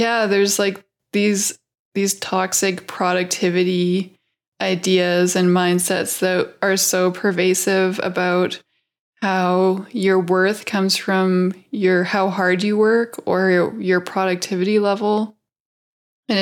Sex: female